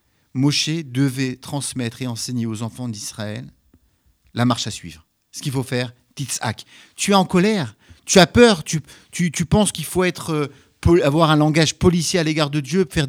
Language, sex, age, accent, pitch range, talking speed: French, male, 50-69, French, 120-160 Hz, 185 wpm